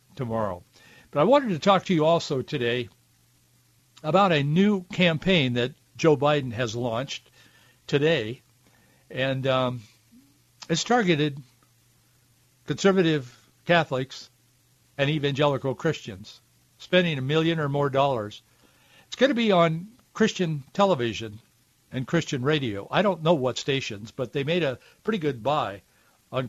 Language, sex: English, male